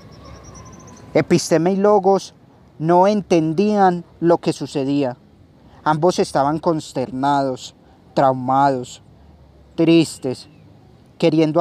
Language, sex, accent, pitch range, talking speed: Spanish, male, Colombian, 140-170 Hz, 70 wpm